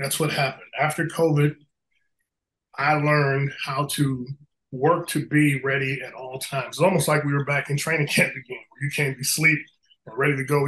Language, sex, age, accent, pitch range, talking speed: English, male, 20-39, American, 145-170 Hz, 200 wpm